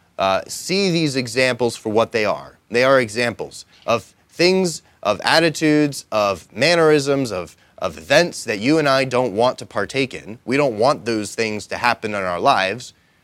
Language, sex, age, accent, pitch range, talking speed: English, male, 30-49, American, 100-135 Hz, 175 wpm